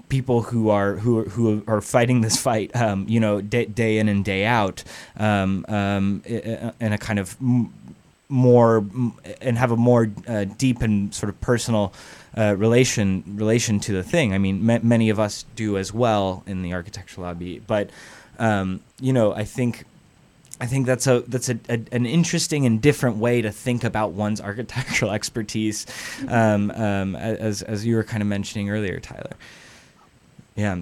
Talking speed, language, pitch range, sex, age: 180 wpm, English, 100-115 Hz, male, 20-39